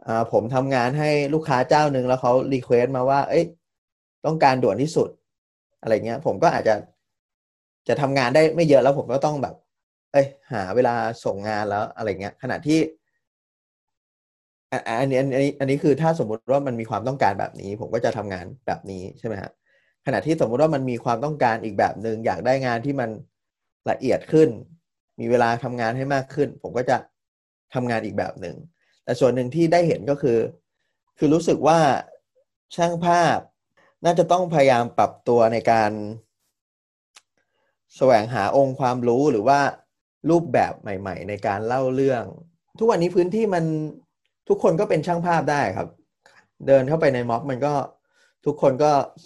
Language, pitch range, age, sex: Thai, 120-155 Hz, 20-39, male